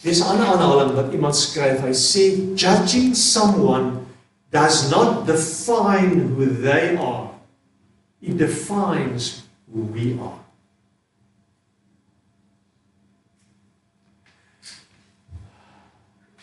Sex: male